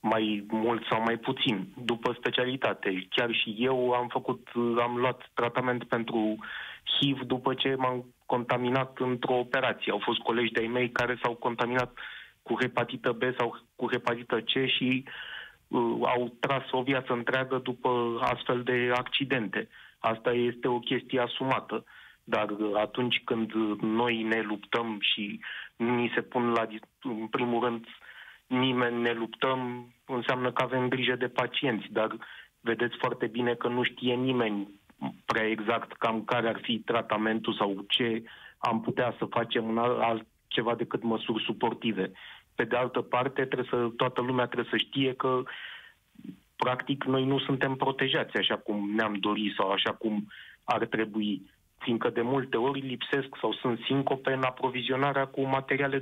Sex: male